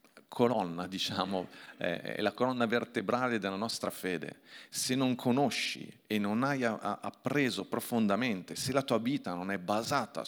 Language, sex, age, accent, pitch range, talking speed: Italian, male, 40-59, native, 100-135 Hz, 140 wpm